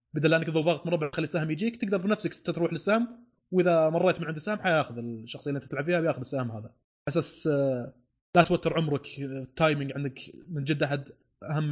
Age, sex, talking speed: 20-39, male, 190 wpm